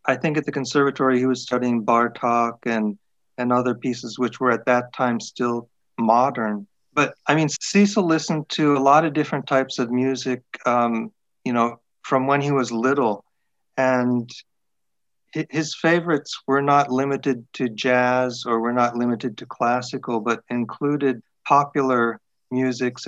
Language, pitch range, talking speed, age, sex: English, 115-135 Hz, 155 wpm, 50-69, male